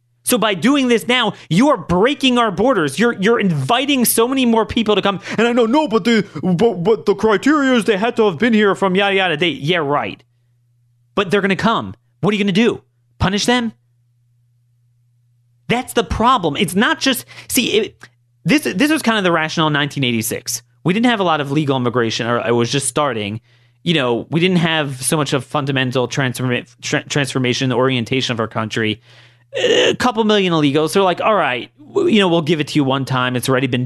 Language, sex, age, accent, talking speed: English, male, 30-49, American, 220 wpm